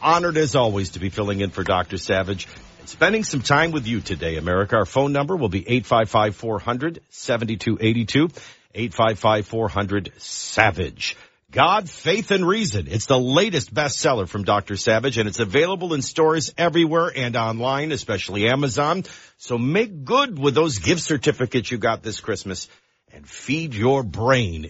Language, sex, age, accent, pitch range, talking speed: English, male, 50-69, American, 100-150 Hz, 150 wpm